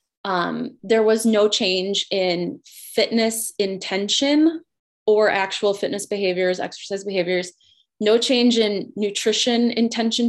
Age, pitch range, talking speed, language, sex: 20-39, 185-225 Hz, 110 wpm, English, female